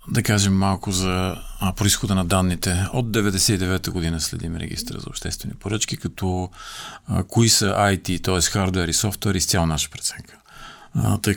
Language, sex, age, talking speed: Bulgarian, male, 40-59, 150 wpm